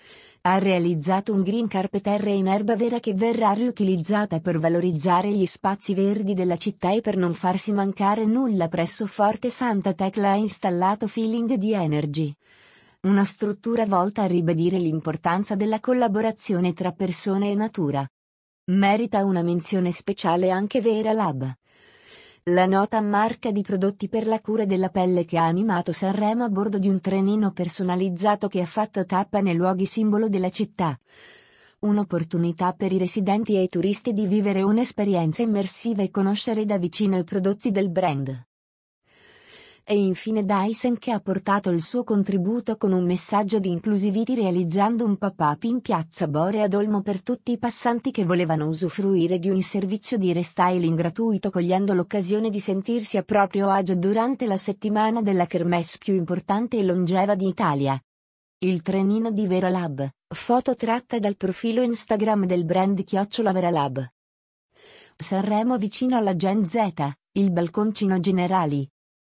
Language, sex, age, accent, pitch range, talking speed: Italian, female, 30-49, native, 180-215 Hz, 150 wpm